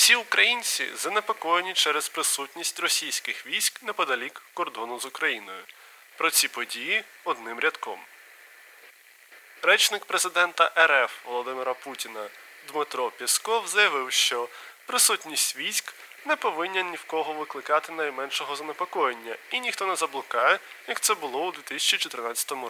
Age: 20-39